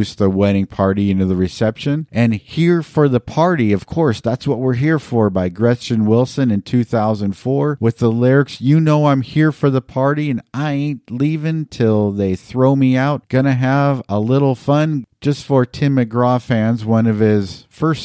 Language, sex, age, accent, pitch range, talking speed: English, male, 50-69, American, 110-135 Hz, 185 wpm